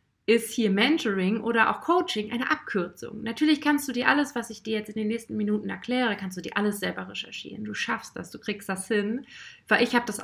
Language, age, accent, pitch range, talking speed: German, 30-49, German, 185-220 Hz, 230 wpm